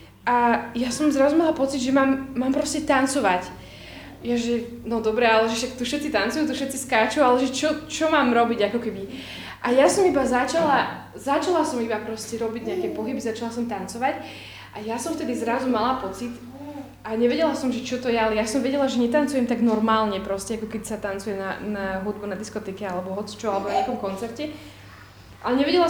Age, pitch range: 20-39, 230-290 Hz